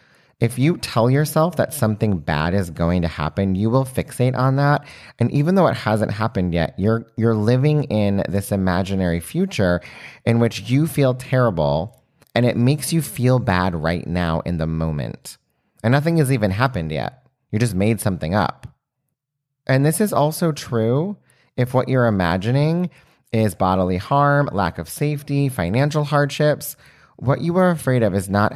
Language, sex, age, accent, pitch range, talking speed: English, male, 30-49, American, 95-140 Hz, 170 wpm